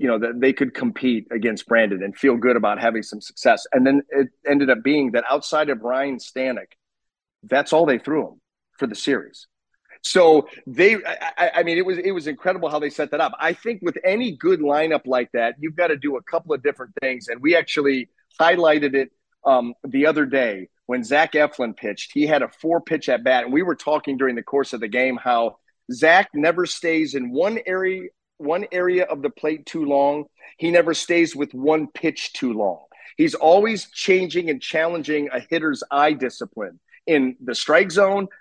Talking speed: 205 wpm